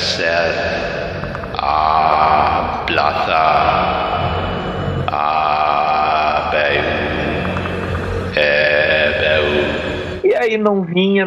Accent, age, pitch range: Brazilian, 60-79, 150-215 Hz